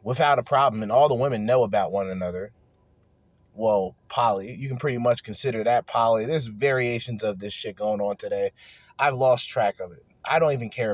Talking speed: 205 wpm